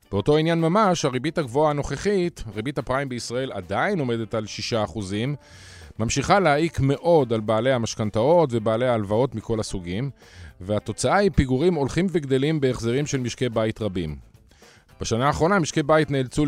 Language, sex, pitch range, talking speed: Hebrew, male, 110-150 Hz, 140 wpm